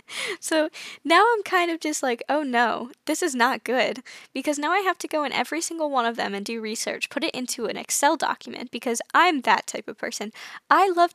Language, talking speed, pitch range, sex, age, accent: English, 225 wpm, 245-320 Hz, female, 10-29, American